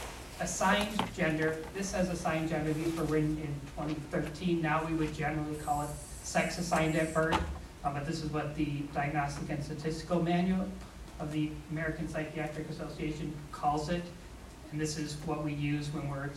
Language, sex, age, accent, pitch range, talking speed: English, male, 30-49, American, 150-175 Hz, 170 wpm